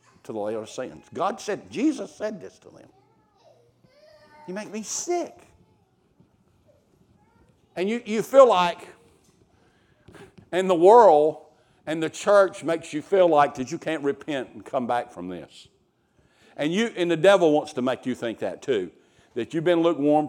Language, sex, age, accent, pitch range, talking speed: English, male, 60-79, American, 145-210 Hz, 165 wpm